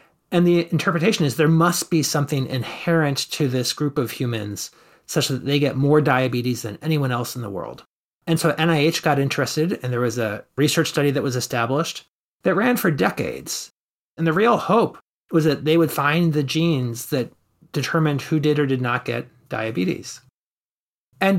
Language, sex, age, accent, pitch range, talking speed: English, male, 30-49, American, 125-170 Hz, 180 wpm